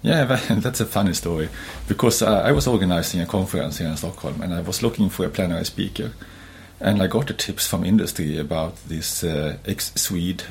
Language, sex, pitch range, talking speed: English, male, 85-100 Hz, 195 wpm